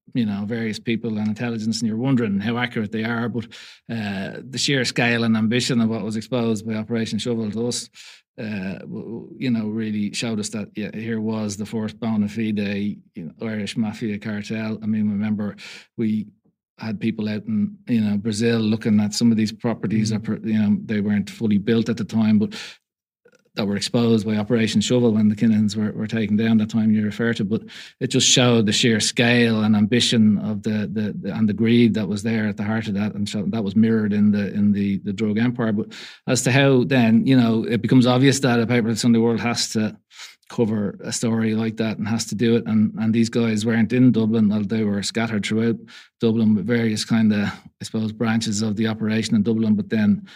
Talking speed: 220 wpm